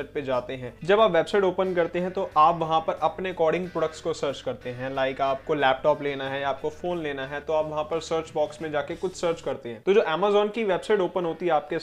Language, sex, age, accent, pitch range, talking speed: Hindi, male, 20-39, native, 145-185 Hz, 55 wpm